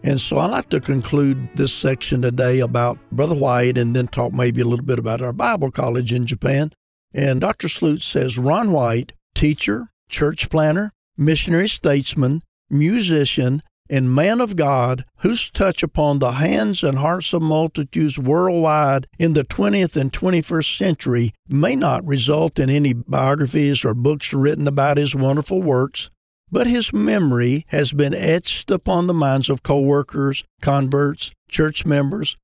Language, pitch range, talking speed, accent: English, 125-155 Hz, 155 wpm, American